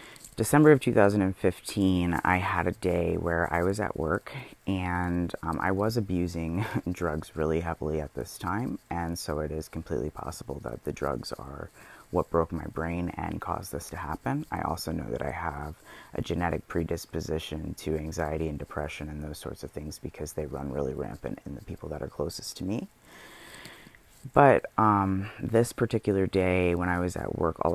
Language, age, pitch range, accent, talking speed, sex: English, 30-49, 80-95 Hz, American, 180 wpm, female